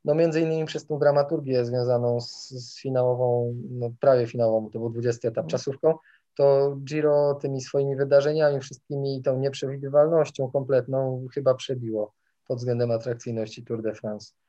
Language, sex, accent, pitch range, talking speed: Polish, male, native, 125-150 Hz, 145 wpm